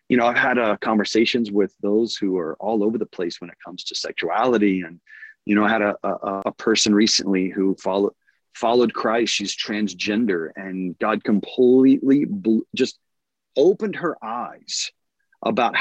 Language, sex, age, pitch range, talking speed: English, male, 30-49, 100-140 Hz, 165 wpm